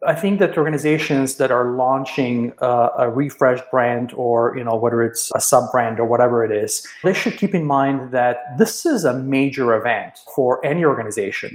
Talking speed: 185 wpm